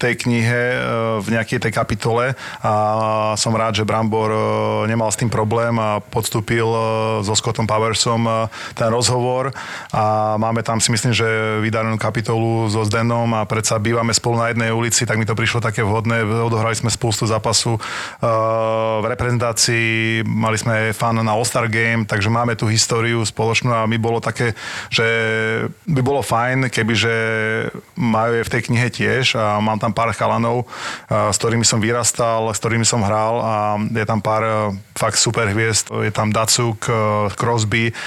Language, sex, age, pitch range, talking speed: Slovak, male, 30-49, 110-120 Hz, 160 wpm